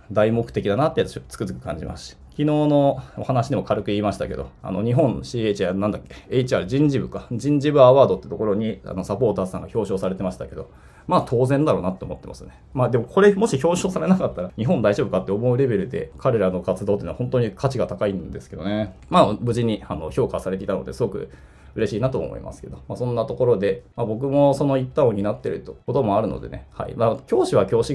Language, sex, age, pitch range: Japanese, male, 20-39, 100-140 Hz